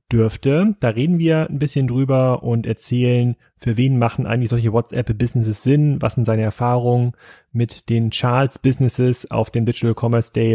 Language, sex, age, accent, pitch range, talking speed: German, male, 30-49, German, 115-130 Hz, 160 wpm